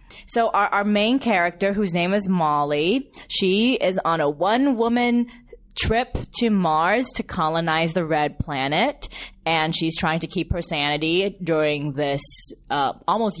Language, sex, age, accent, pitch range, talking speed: English, female, 20-39, American, 160-230 Hz, 150 wpm